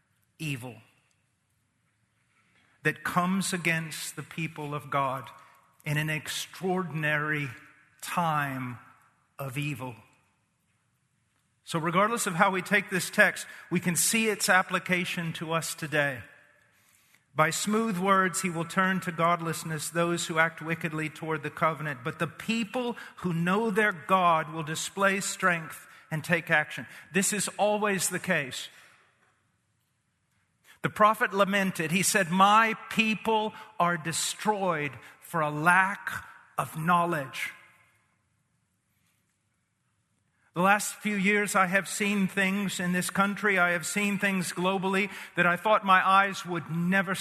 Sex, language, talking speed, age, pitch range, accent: male, English, 125 wpm, 50-69, 150-195 Hz, American